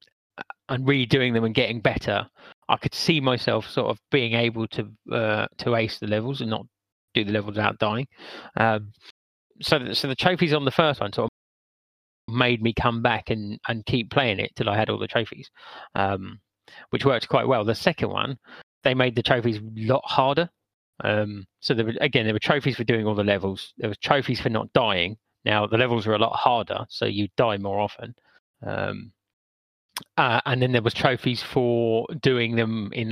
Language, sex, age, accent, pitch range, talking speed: English, male, 30-49, British, 105-125 Hz, 200 wpm